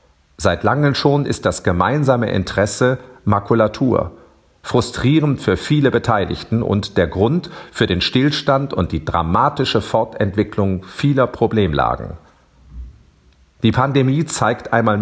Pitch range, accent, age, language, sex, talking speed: 90-130 Hz, German, 50-69, German, male, 110 wpm